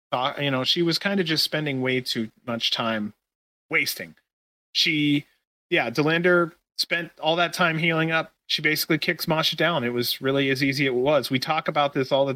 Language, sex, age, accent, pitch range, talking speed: English, male, 30-49, American, 120-160 Hz, 200 wpm